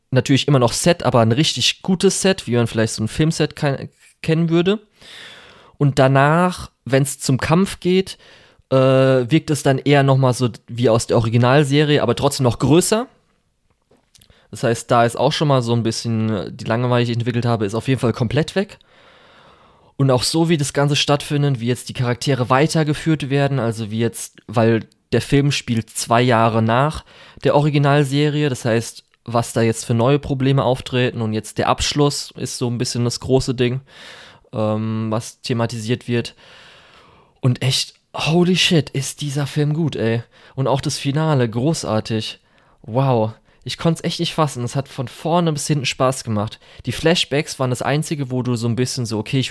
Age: 20-39